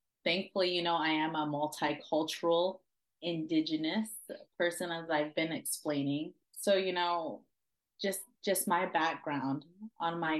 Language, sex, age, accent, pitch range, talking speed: English, female, 20-39, American, 160-190 Hz, 125 wpm